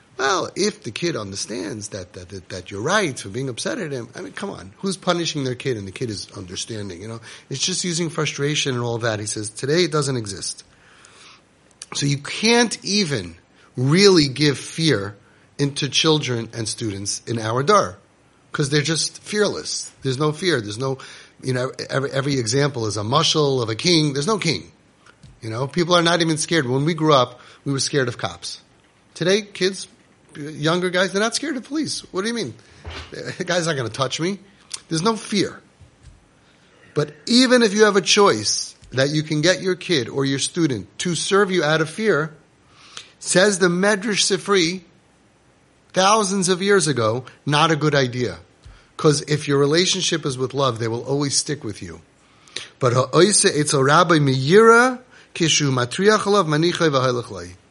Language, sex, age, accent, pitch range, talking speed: English, male, 30-49, American, 125-180 Hz, 175 wpm